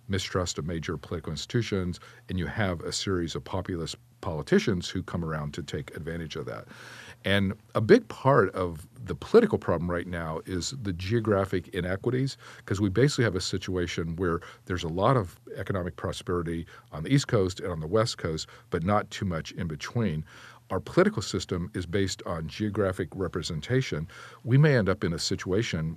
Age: 50-69